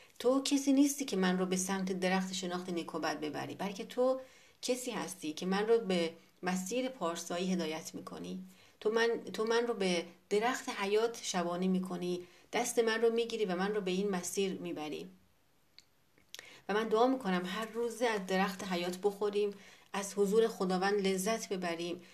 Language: Persian